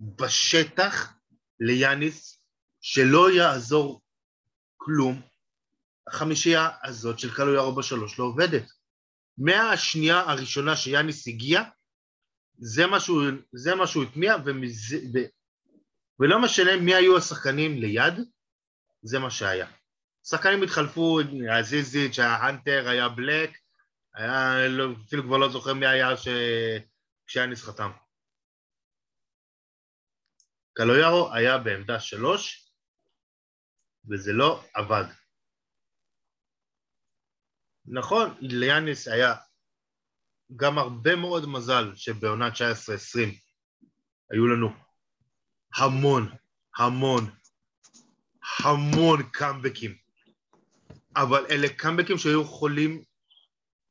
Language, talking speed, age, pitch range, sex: Hebrew, 80 wpm, 30-49, 120-155 Hz, male